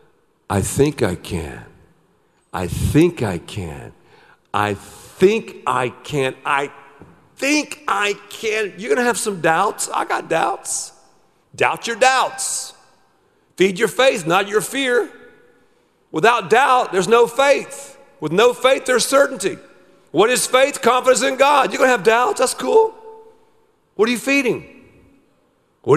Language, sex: English, male